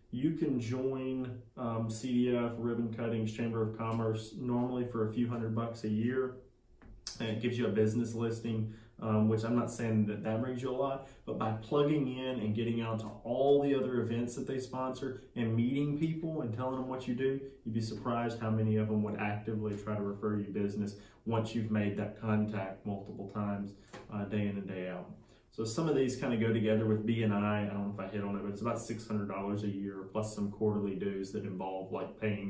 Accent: American